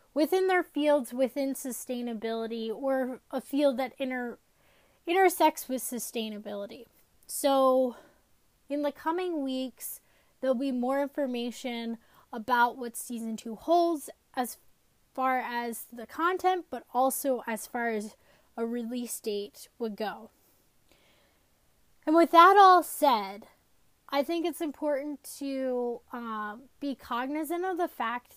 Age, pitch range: 10-29, 230-285 Hz